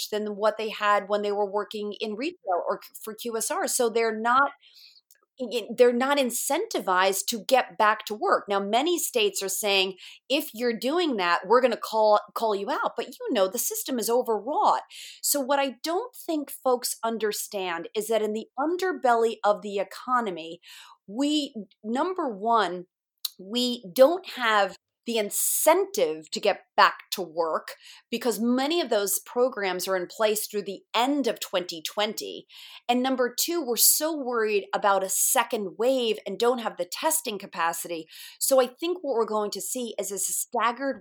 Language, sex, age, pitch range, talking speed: English, female, 30-49, 205-280 Hz, 170 wpm